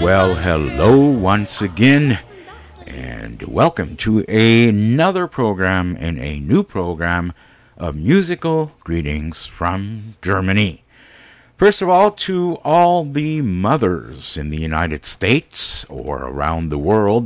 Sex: male